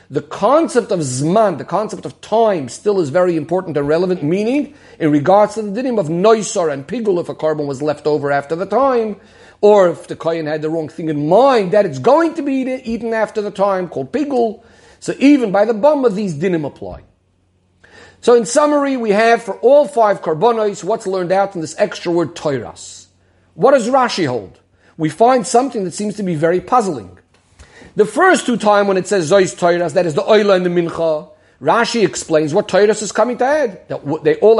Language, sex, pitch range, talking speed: English, male, 160-225 Hz, 205 wpm